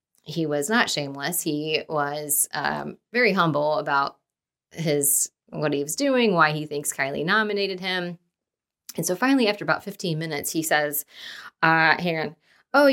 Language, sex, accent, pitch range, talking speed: English, female, American, 145-210 Hz, 150 wpm